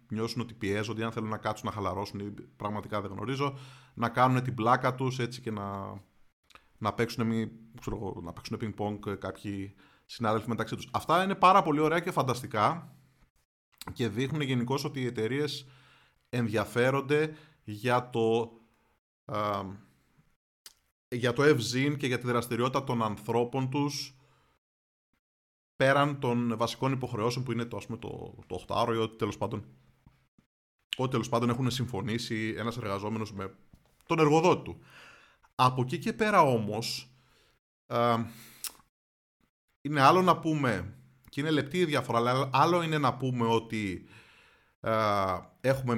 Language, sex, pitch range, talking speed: Greek, male, 105-130 Hz, 140 wpm